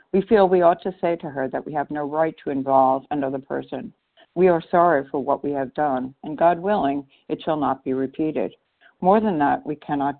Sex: female